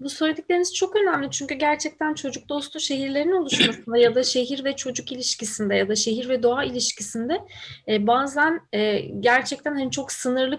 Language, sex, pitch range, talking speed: Turkish, female, 220-300 Hz, 145 wpm